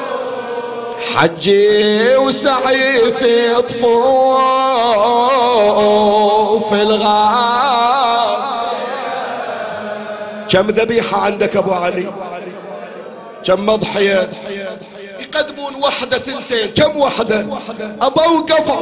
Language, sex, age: Arabic, male, 50-69